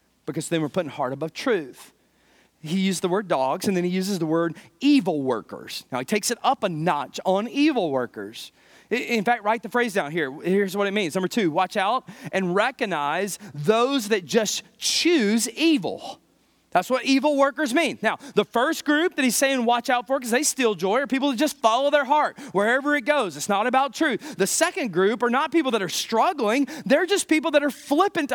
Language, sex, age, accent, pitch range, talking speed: English, male, 30-49, American, 200-290 Hz, 210 wpm